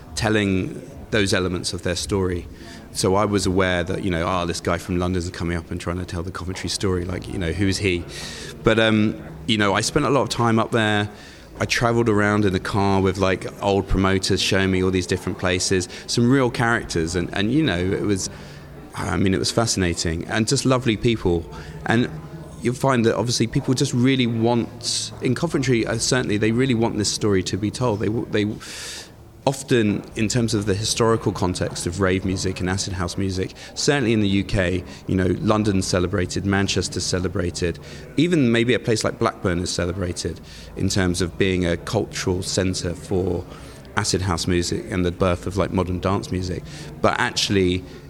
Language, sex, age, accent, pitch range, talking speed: English, male, 20-39, British, 90-110 Hz, 190 wpm